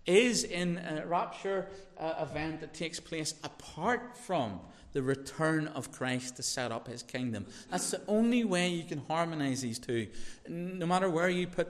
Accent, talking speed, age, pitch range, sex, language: British, 175 wpm, 30-49, 130-175 Hz, male, English